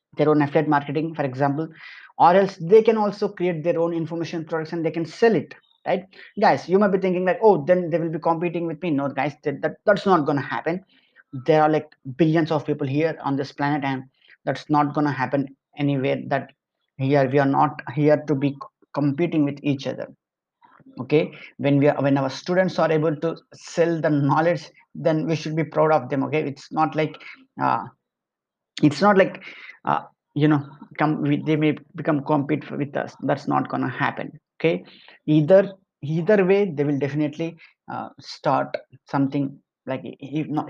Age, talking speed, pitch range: 20-39, 190 wpm, 145-170 Hz